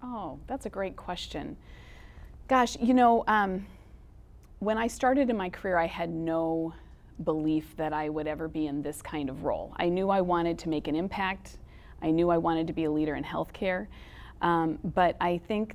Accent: American